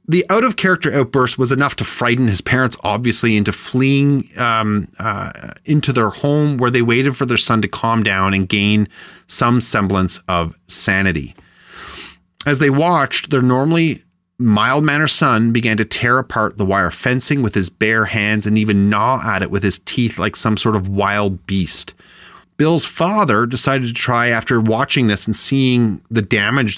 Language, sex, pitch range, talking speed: English, male, 105-135 Hz, 170 wpm